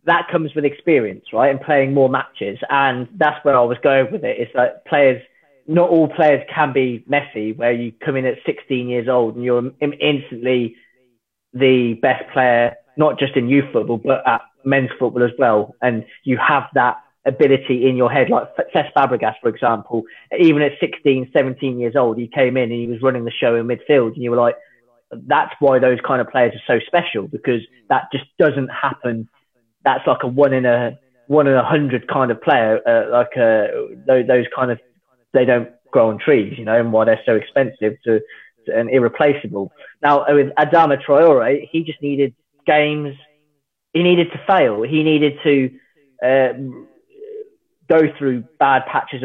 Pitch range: 120-145 Hz